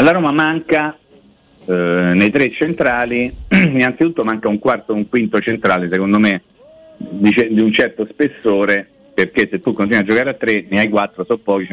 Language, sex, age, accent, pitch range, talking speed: Italian, male, 50-69, native, 100-145 Hz, 190 wpm